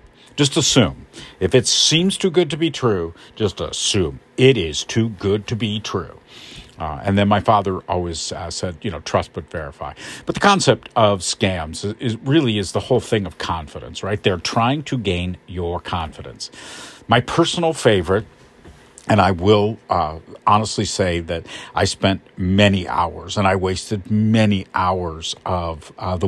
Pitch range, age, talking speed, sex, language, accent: 85-115 Hz, 50-69, 170 wpm, male, English, American